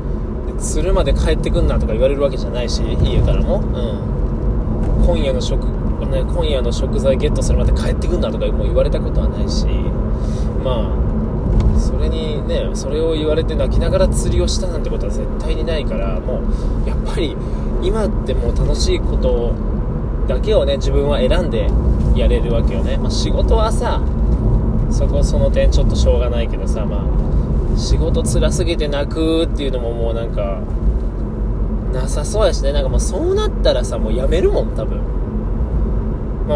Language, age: Japanese, 20-39